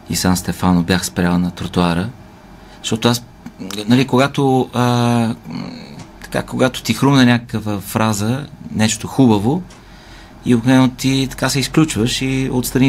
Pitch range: 95-120 Hz